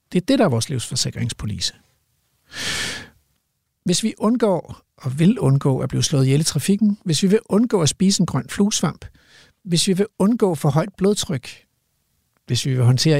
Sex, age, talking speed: male, 60-79, 175 wpm